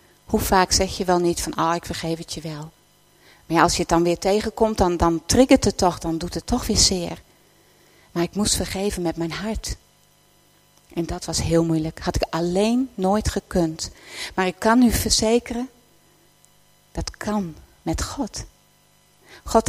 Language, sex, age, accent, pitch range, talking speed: Dutch, female, 40-59, Dutch, 170-230 Hz, 185 wpm